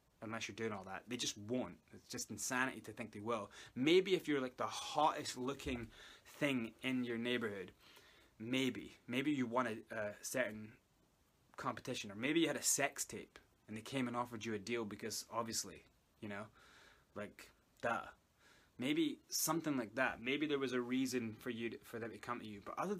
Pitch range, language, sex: 110-140 Hz, English, male